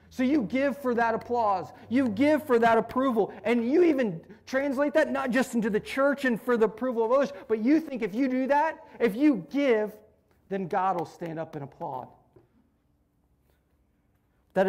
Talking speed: 185 wpm